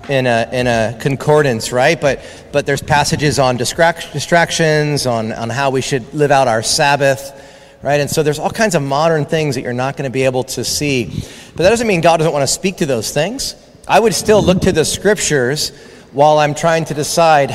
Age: 40-59